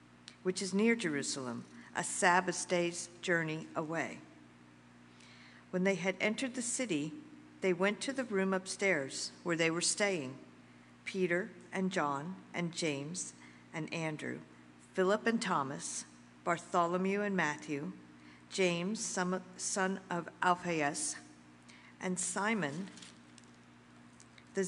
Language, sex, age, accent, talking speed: English, female, 50-69, American, 110 wpm